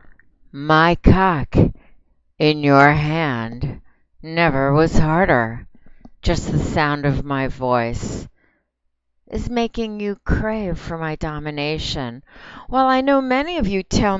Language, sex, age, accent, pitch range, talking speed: English, female, 60-79, American, 135-190 Hz, 125 wpm